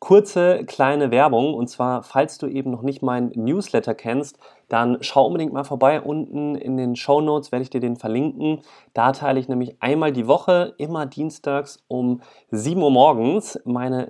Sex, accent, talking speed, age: male, German, 180 wpm, 30-49